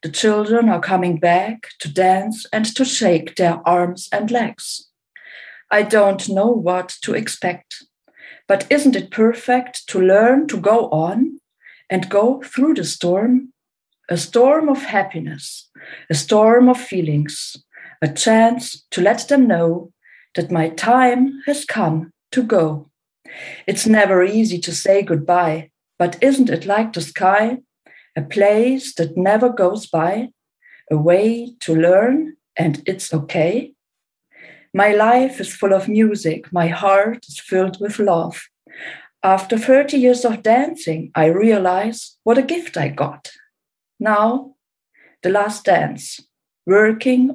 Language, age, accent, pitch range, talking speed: English, 50-69, German, 175-245 Hz, 140 wpm